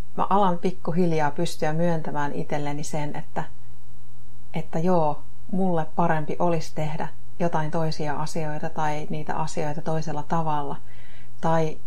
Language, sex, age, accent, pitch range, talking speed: Finnish, female, 30-49, native, 125-170 Hz, 115 wpm